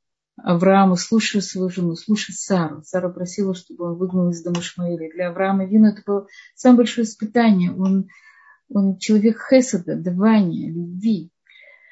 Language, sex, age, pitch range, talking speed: Russian, female, 30-49, 180-225 Hz, 135 wpm